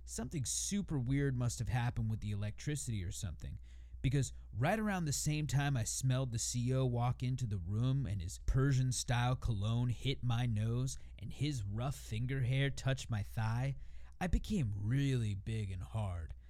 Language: English